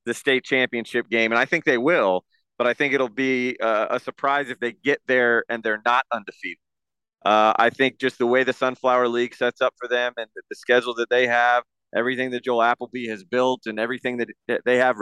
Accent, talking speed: American, 225 wpm